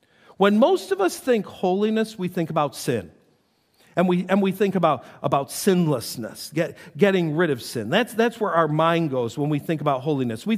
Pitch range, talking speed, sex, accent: 155-215 Hz, 200 wpm, male, American